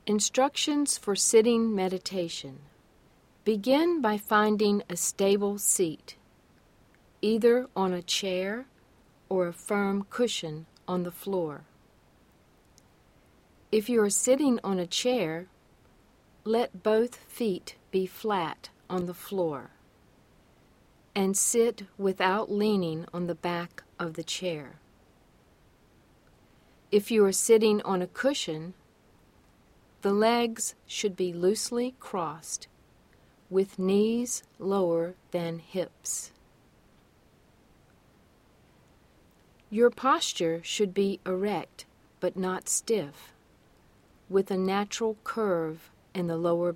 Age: 50-69